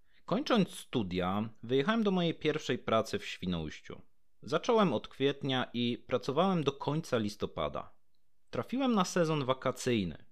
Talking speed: 120 wpm